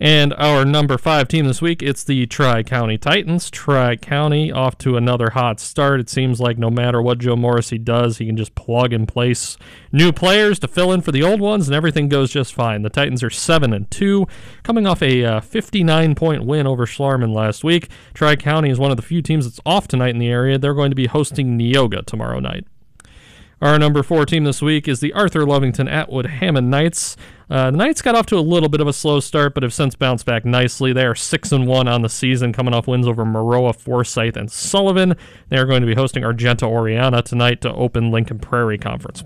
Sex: male